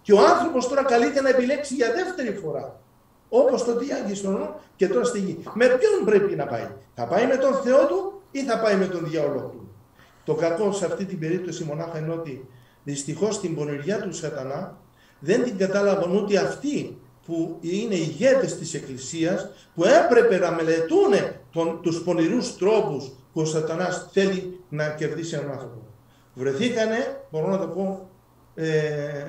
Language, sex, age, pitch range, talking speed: Greek, male, 50-69, 150-215 Hz, 165 wpm